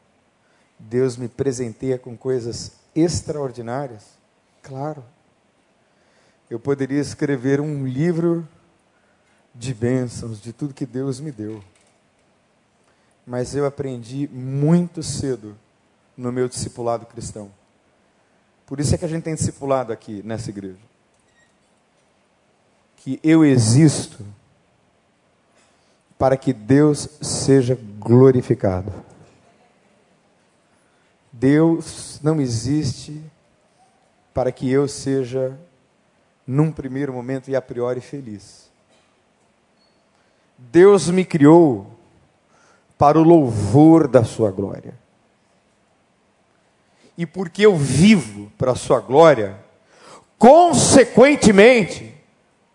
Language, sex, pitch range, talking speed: Portuguese, male, 120-155 Hz, 90 wpm